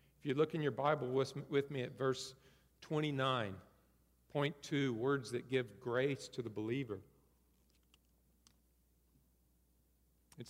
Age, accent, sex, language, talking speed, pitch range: 50-69, American, male, English, 110 wpm, 125-200 Hz